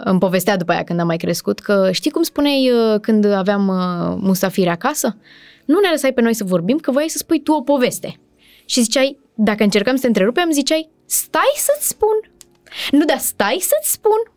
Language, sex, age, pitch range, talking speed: Romanian, female, 20-39, 185-280 Hz, 190 wpm